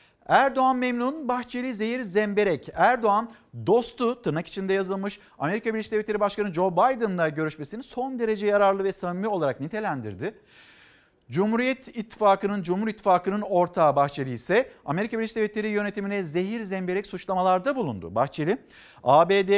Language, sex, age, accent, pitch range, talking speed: Turkish, male, 50-69, native, 155-215 Hz, 125 wpm